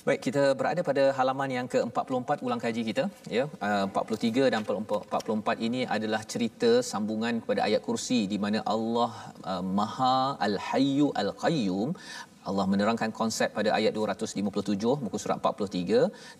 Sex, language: male, Malayalam